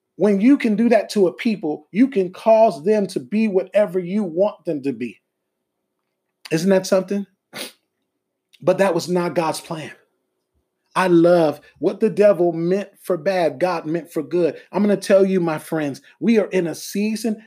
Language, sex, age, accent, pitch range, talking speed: English, male, 30-49, American, 175-220 Hz, 180 wpm